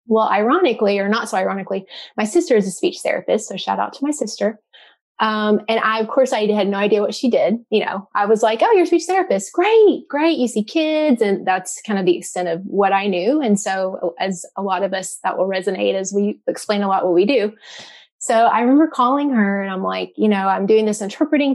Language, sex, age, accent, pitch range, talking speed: English, female, 20-39, American, 190-230 Hz, 240 wpm